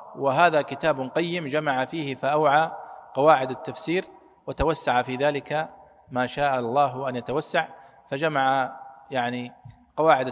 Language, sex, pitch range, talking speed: Arabic, male, 135-170 Hz, 110 wpm